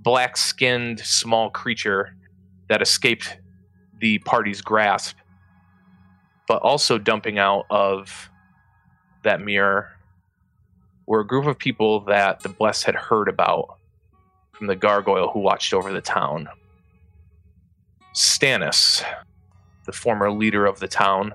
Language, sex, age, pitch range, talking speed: English, male, 20-39, 90-110 Hz, 115 wpm